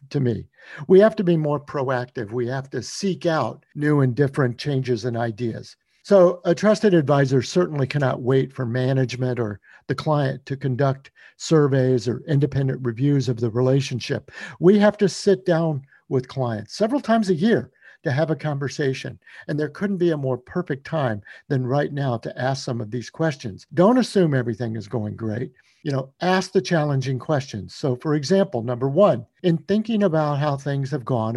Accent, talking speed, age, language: American, 185 wpm, 50-69, English